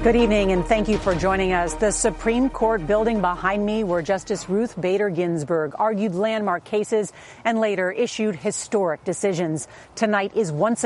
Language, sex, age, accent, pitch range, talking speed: English, female, 40-59, American, 185-230 Hz, 165 wpm